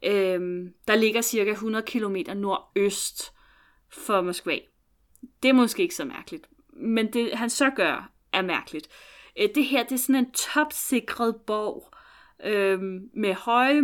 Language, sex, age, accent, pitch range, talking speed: Danish, female, 30-49, native, 195-260 Hz, 135 wpm